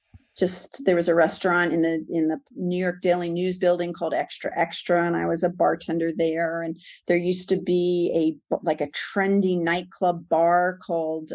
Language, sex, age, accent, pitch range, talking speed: English, female, 40-59, American, 165-200 Hz, 185 wpm